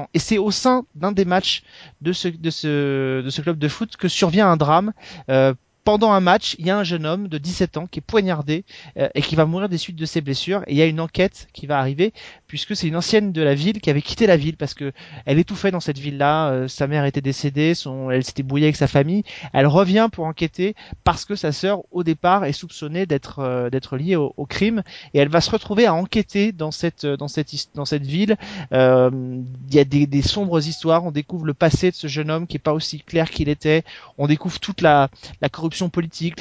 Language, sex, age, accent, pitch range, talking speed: French, male, 30-49, French, 145-190 Hz, 240 wpm